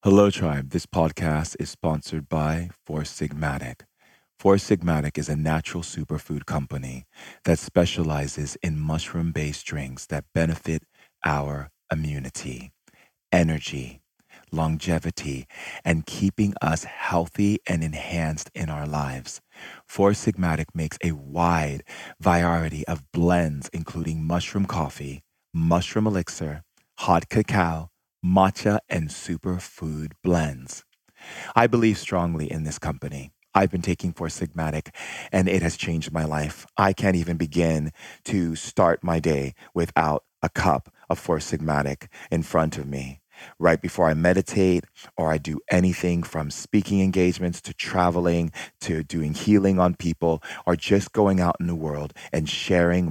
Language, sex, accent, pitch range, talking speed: English, male, American, 75-90 Hz, 130 wpm